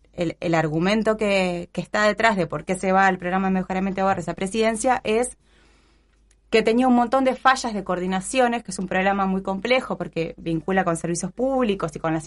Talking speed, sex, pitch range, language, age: 205 wpm, female, 175-230 Hz, Spanish, 20-39